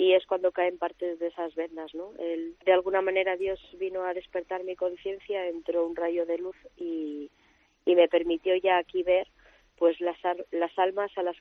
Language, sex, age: Spanish, female, 20-39